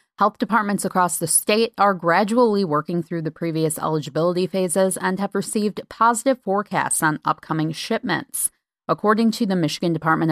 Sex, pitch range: female, 160-210 Hz